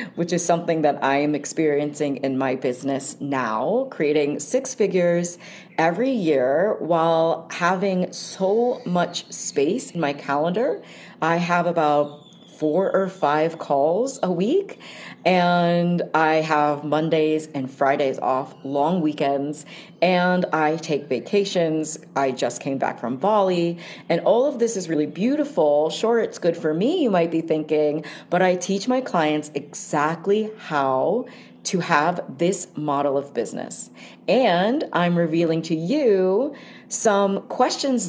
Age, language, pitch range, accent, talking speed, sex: 40-59, English, 155-205 Hz, American, 140 wpm, female